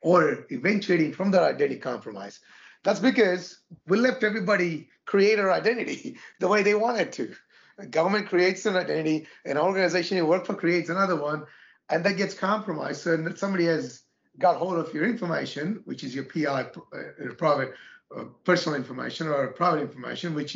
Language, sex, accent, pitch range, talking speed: English, male, Indian, 160-190 Hz, 165 wpm